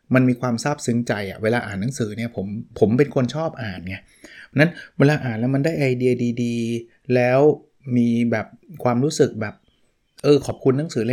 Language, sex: Thai, male